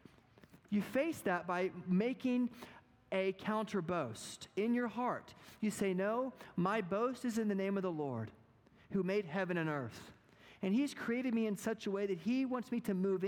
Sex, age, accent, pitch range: male, 40-59, American, 155-220 Hz